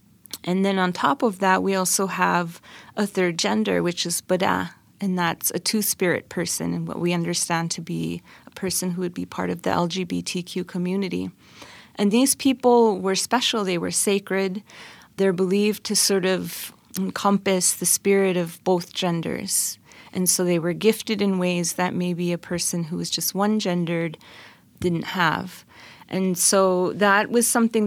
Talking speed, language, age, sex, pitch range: 165 wpm, English, 30-49, female, 175-200 Hz